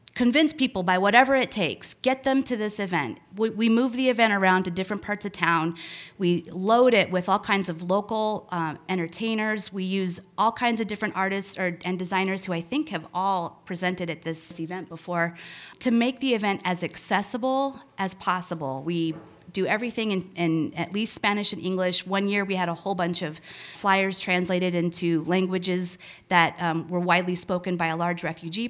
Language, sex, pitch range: English, female, 175-220 Hz